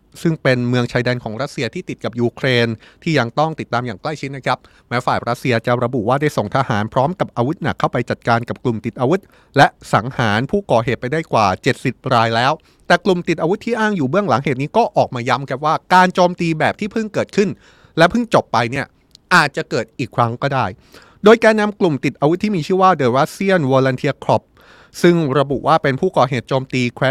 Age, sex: 20-39, male